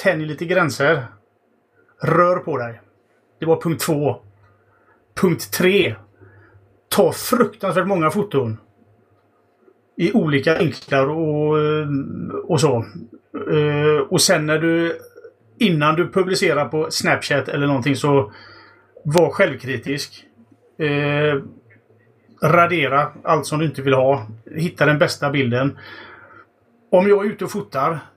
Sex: male